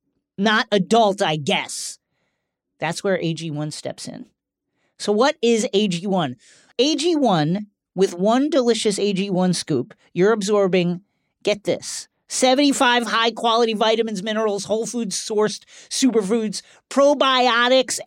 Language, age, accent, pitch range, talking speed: English, 40-59, American, 170-240 Hz, 105 wpm